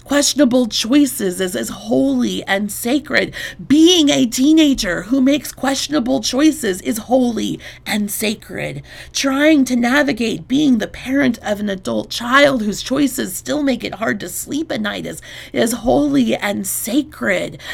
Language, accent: English, American